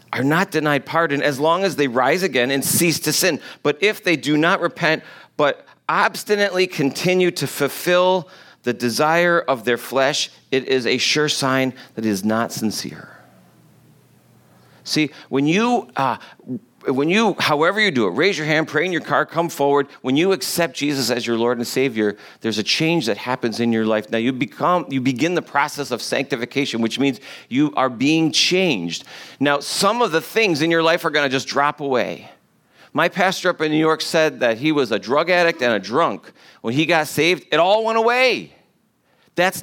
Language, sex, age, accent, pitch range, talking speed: English, male, 40-59, American, 125-170 Hz, 195 wpm